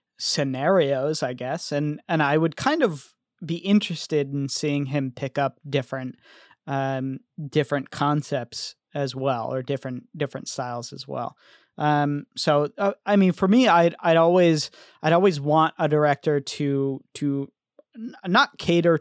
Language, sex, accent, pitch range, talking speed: English, male, American, 135-160 Hz, 150 wpm